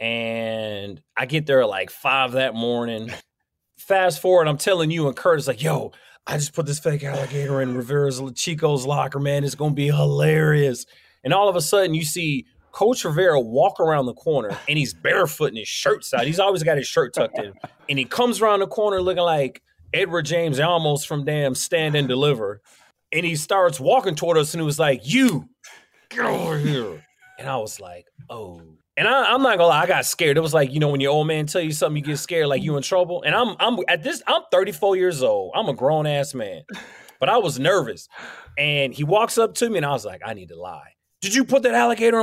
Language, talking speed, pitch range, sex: English, 230 wpm, 145-225 Hz, male